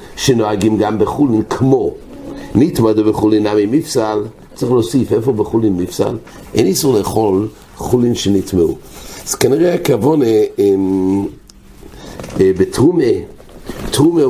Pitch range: 105-135 Hz